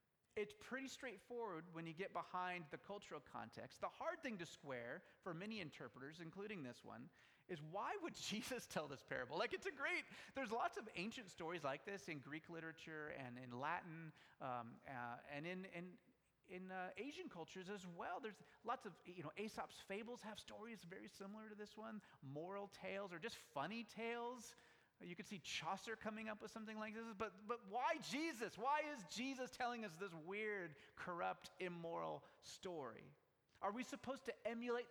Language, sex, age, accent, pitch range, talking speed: English, male, 30-49, American, 165-230 Hz, 180 wpm